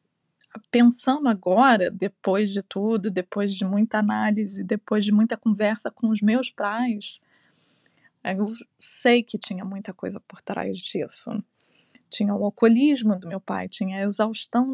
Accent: Brazilian